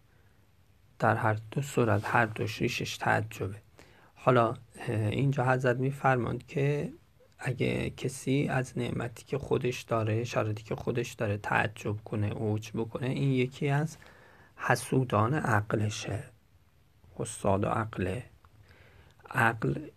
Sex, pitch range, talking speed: male, 105-130 Hz, 110 wpm